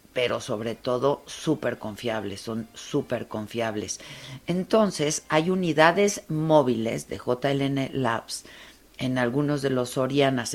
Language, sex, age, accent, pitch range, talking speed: Spanish, female, 50-69, Mexican, 115-150 Hz, 115 wpm